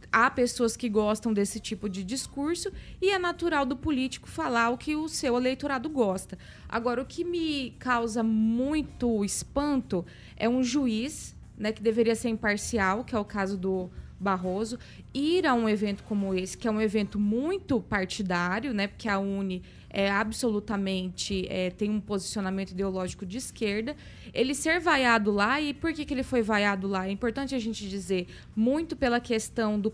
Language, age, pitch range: Portuguese, 20-39, 200-275 Hz